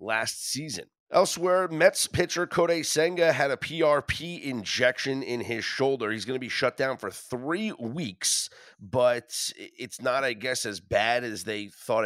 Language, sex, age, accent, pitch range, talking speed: English, male, 30-49, American, 95-140 Hz, 165 wpm